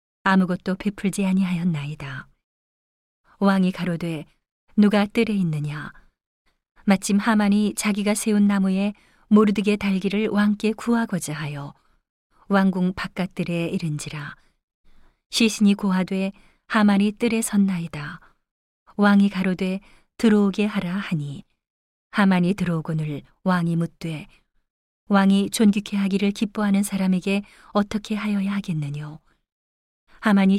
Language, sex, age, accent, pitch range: Korean, female, 40-59, native, 170-205 Hz